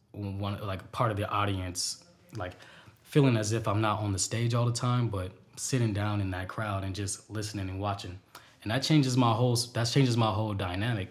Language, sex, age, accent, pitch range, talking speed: English, male, 20-39, American, 95-115 Hz, 210 wpm